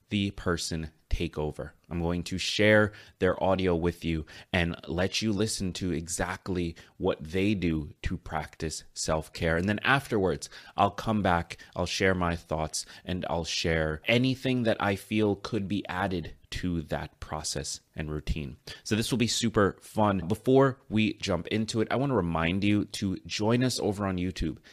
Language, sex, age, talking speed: English, male, 30-49, 170 wpm